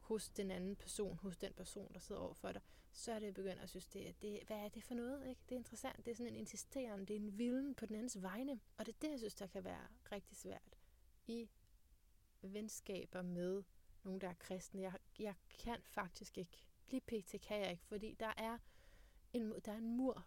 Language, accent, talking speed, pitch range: Danish, native, 230 wpm, 180-215 Hz